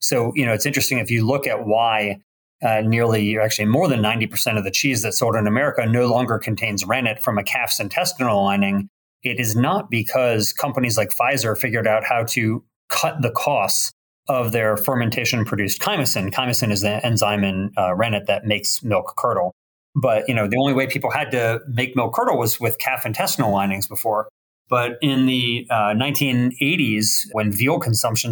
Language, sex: English, male